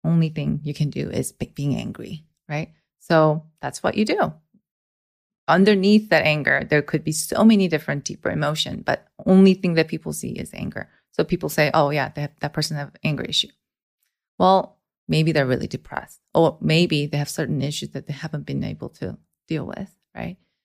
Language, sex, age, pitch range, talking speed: English, female, 20-39, 155-200 Hz, 190 wpm